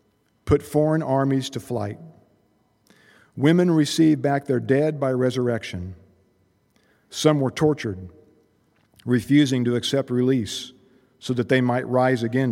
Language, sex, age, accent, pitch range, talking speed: English, male, 50-69, American, 110-145 Hz, 120 wpm